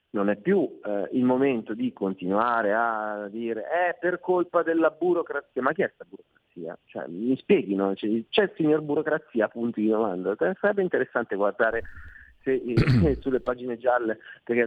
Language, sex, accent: Italian, male, native